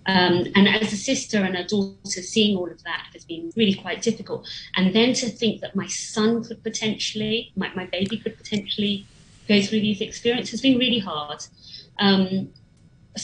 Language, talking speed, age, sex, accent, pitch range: English, 180 wpm, 30-49, female, British, 175-220 Hz